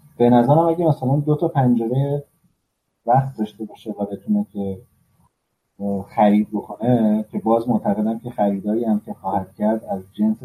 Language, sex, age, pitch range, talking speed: Persian, male, 30-49, 95-130 Hz, 145 wpm